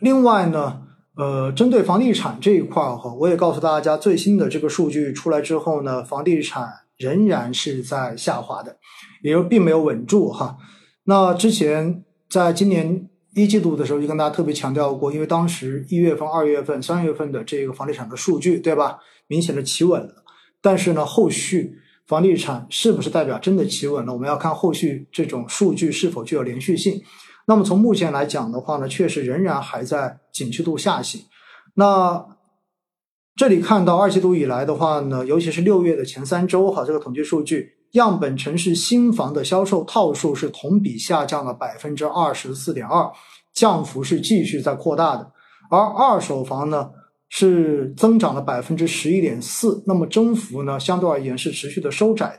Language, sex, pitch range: Chinese, male, 150-195 Hz